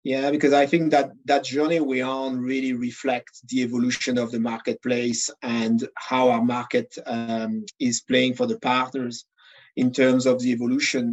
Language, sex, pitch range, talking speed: English, male, 125-140 Hz, 165 wpm